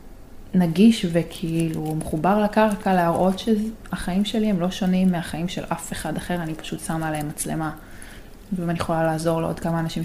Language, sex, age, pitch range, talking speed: Hebrew, female, 20-39, 155-195 Hz, 160 wpm